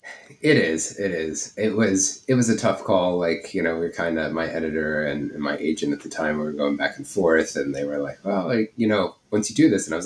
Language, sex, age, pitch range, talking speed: English, male, 30-49, 75-105 Hz, 280 wpm